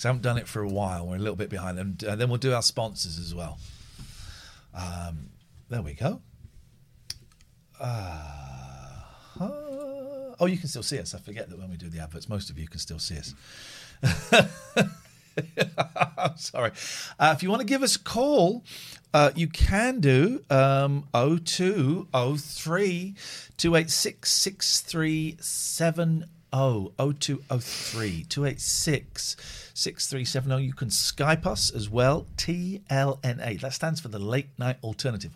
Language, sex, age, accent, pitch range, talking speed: English, male, 40-59, British, 105-165 Hz, 145 wpm